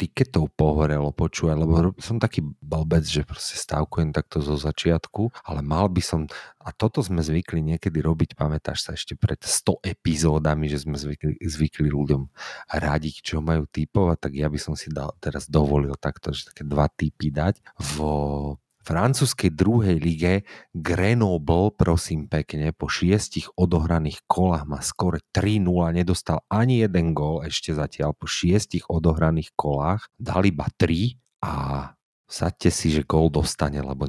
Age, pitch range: 30-49, 75-90 Hz